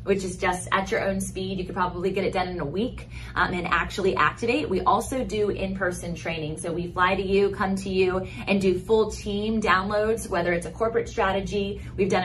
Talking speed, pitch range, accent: 220 wpm, 160-195 Hz, American